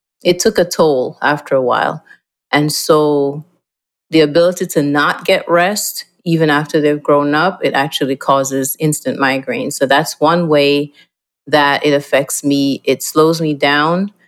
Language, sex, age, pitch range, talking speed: English, female, 30-49, 145-165 Hz, 155 wpm